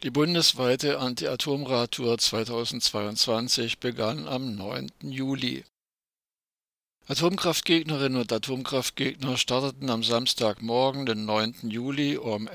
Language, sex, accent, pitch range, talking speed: German, male, German, 110-135 Hz, 90 wpm